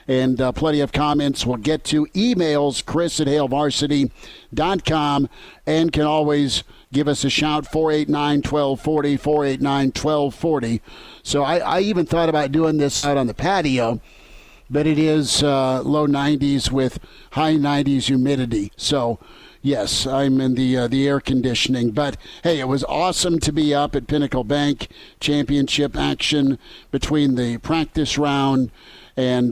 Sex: male